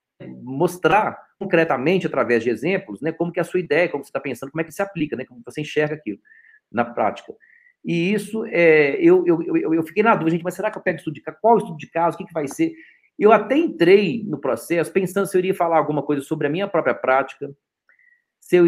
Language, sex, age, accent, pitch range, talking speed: Portuguese, male, 40-59, Brazilian, 140-200 Hz, 240 wpm